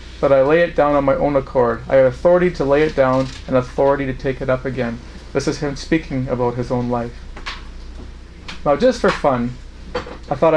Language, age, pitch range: English, 40-59, 120-155 Hz